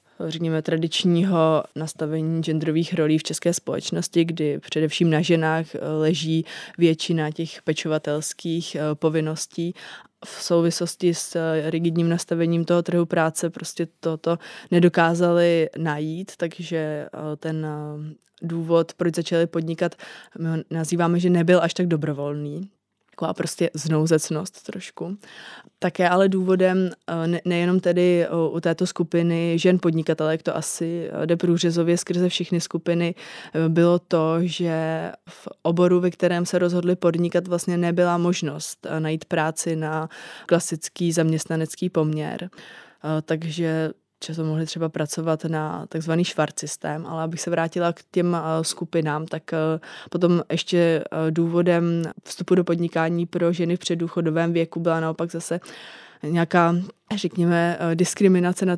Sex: female